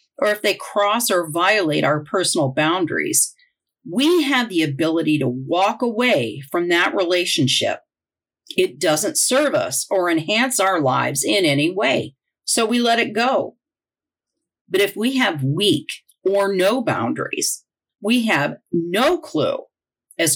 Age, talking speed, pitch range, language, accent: 50-69, 140 wpm, 165-260 Hz, English, American